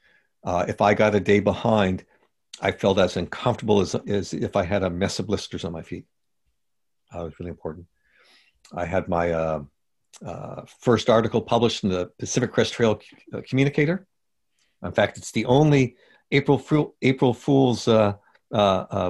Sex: male